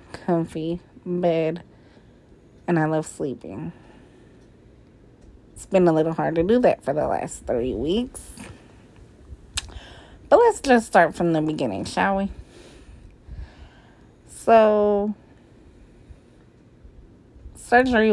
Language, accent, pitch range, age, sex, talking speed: English, American, 155-200 Hz, 30-49, female, 100 wpm